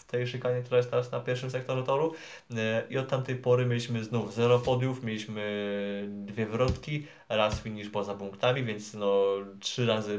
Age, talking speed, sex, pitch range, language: 20-39, 160 wpm, male, 105-115 Hz, Polish